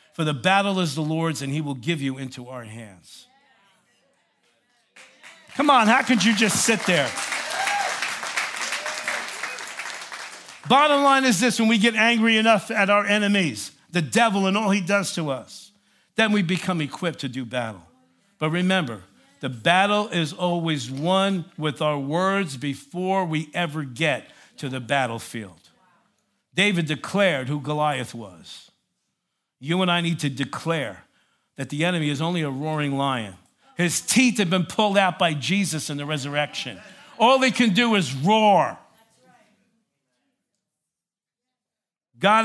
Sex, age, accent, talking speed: male, 50-69, American, 145 wpm